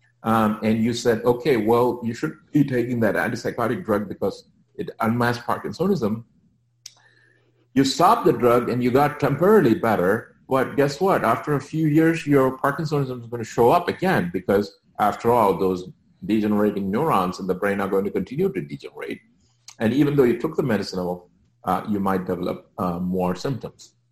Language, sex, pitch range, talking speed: English, male, 110-145 Hz, 175 wpm